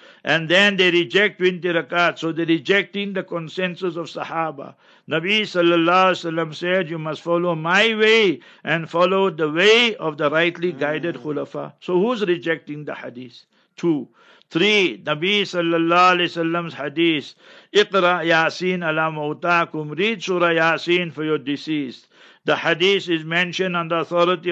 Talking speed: 140 wpm